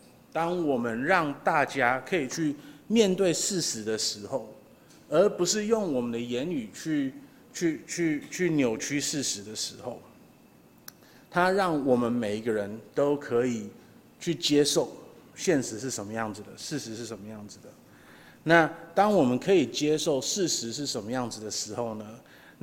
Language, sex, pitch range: Chinese, male, 115-165 Hz